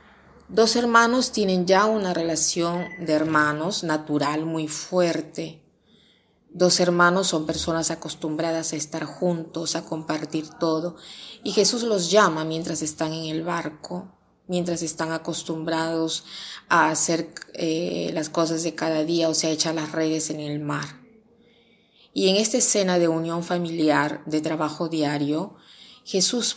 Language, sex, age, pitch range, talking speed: Spanish, female, 30-49, 160-195 Hz, 140 wpm